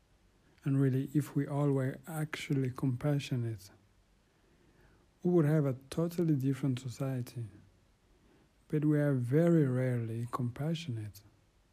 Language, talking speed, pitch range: English, 105 wpm, 110-145 Hz